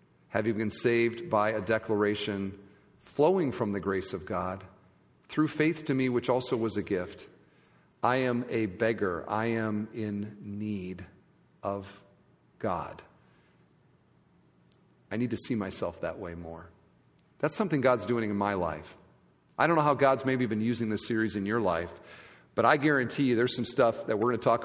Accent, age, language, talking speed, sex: American, 40-59, English, 175 wpm, male